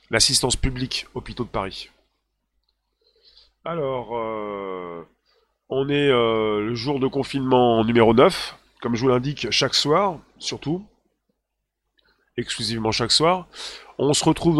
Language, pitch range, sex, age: French, 115-155 Hz, male, 30-49